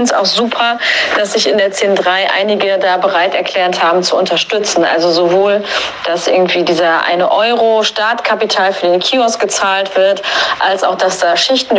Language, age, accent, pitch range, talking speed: German, 30-49, German, 175-225 Hz, 180 wpm